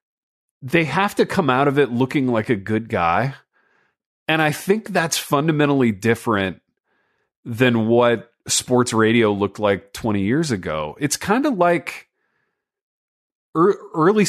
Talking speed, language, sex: 135 wpm, English, male